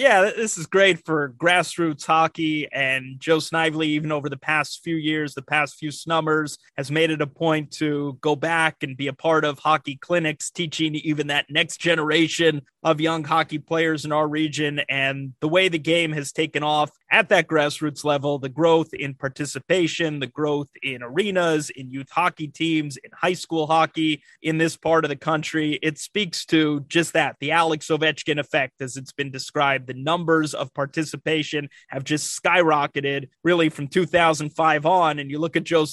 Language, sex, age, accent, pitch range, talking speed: English, male, 30-49, American, 150-170 Hz, 185 wpm